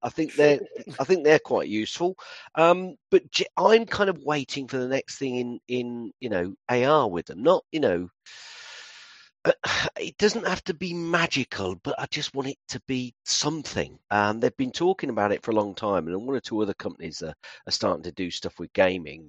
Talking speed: 210 wpm